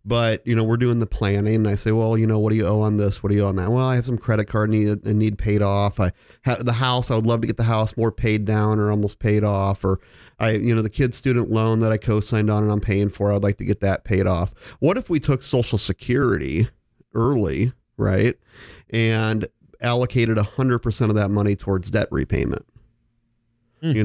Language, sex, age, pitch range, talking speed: English, male, 30-49, 100-120 Hz, 235 wpm